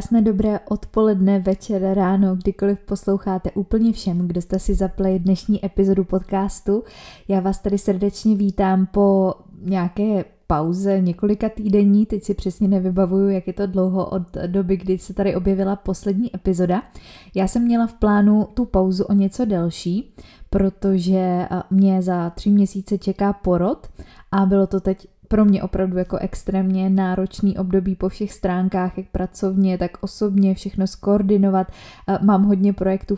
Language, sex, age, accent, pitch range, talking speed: Czech, female, 20-39, native, 185-200 Hz, 145 wpm